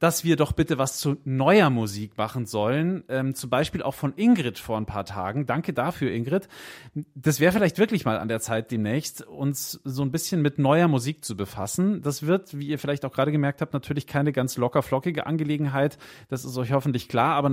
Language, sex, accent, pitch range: German, male, German, 120-165 Hz